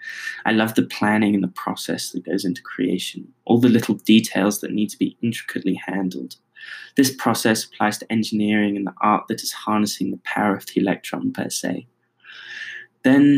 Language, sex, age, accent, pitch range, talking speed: English, male, 10-29, British, 105-115 Hz, 180 wpm